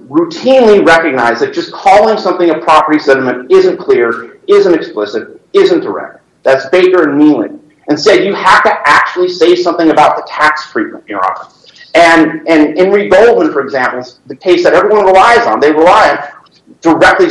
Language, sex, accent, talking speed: English, male, American, 170 wpm